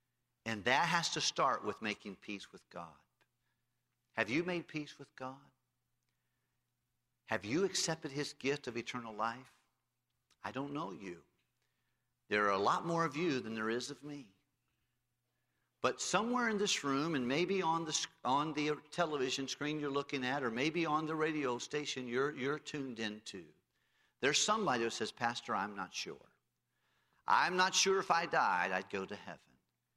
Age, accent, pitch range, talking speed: 50-69, American, 110-145 Hz, 165 wpm